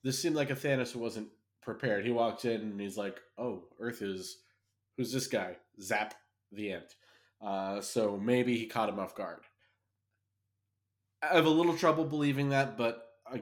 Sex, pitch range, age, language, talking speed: male, 100-130 Hz, 20-39, English, 175 wpm